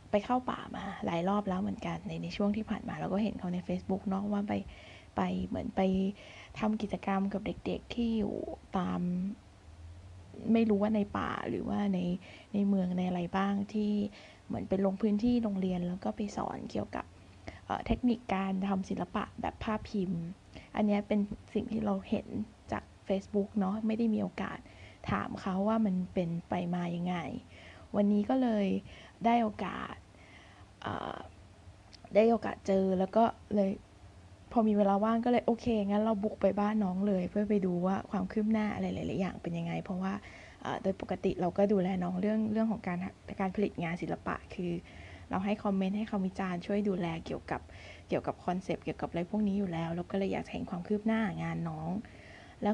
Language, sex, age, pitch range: Thai, female, 20-39, 180-215 Hz